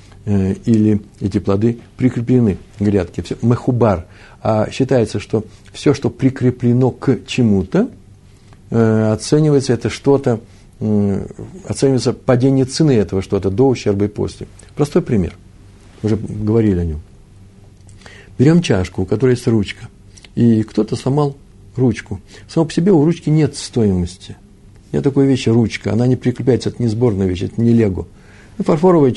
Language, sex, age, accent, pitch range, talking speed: Russian, male, 60-79, native, 100-135 Hz, 130 wpm